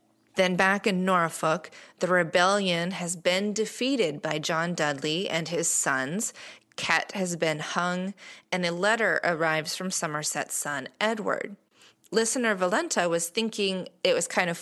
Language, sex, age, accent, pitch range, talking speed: English, female, 30-49, American, 165-200 Hz, 145 wpm